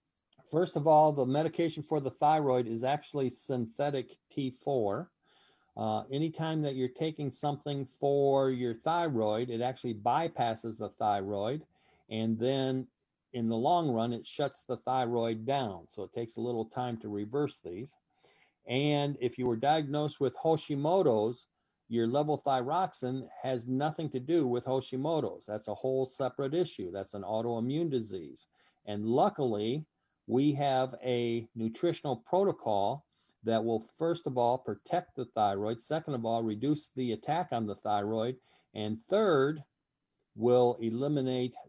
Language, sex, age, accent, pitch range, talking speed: English, male, 50-69, American, 115-145 Hz, 140 wpm